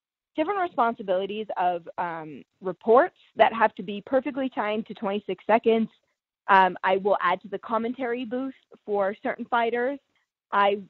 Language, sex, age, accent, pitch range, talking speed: English, female, 20-39, American, 185-240 Hz, 145 wpm